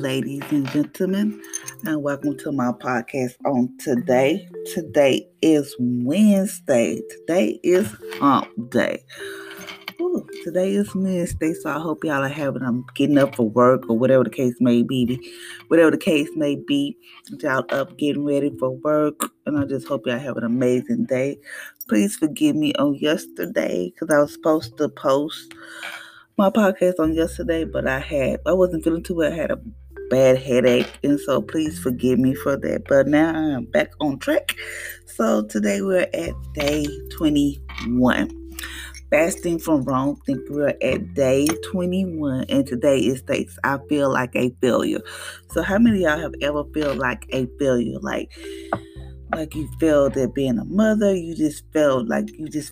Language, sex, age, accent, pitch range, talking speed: English, female, 20-39, American, 125-165 Hz, 165 wpm